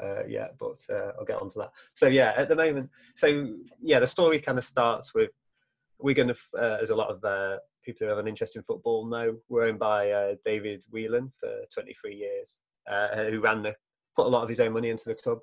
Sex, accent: male, British